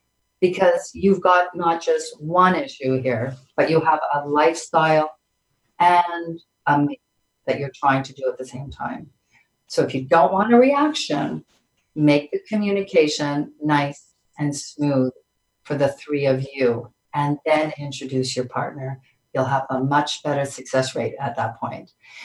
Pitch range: 140-210 Hz